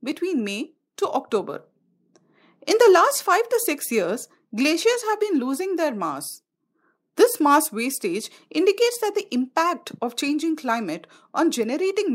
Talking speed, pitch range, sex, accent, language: 145 wpm, 220-355 Hz, female, Indian, English